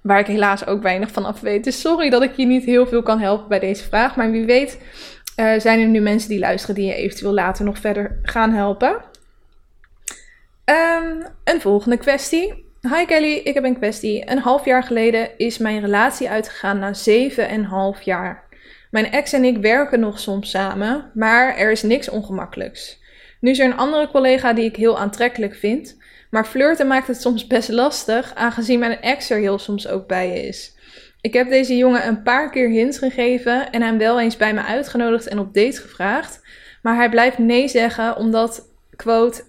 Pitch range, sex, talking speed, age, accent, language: 210-255 Hz, female, 195 wpm, 10-29, Dutch, Dutch